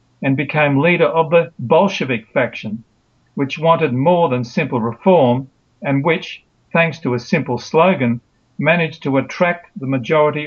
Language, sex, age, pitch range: Japanese, male, 50-69, 125-165 Hz